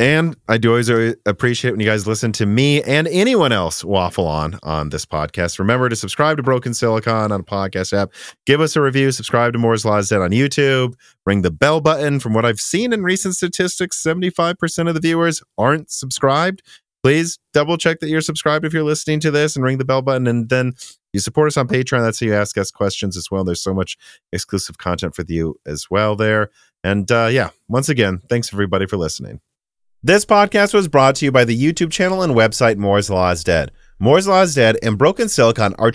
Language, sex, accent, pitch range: English, male, American, 105-155 Hz